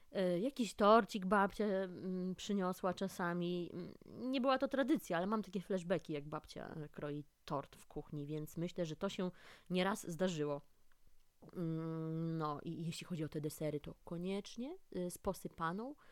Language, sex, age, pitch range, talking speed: Polish, female, 20-39, 165-215 Hz, 140 wpm